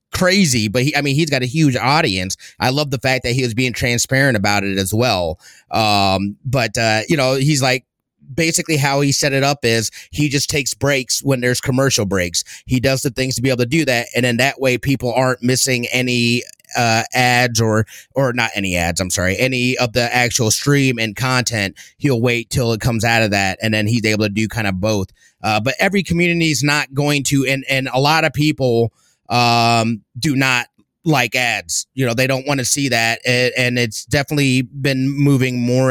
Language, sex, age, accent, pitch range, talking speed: English, male, 30-49, American, 115-140 Hz, 215 wpm